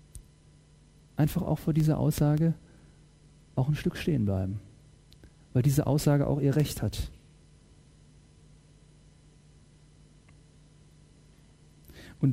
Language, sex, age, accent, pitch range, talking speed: Dutch, male, 40-59, German, 120-155 Hz, 90 wpm